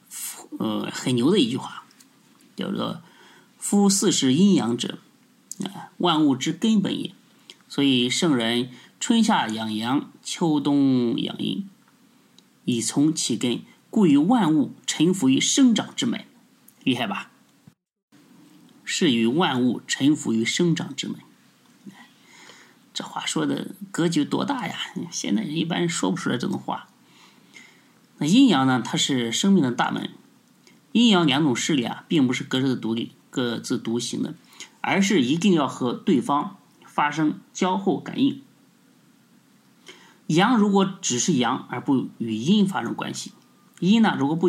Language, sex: Chinese, male